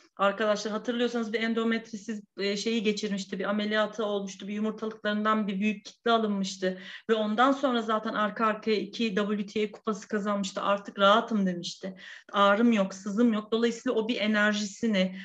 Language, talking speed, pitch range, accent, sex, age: Turkish, 140 wpm, 210-290 Hz, native, female, 40-59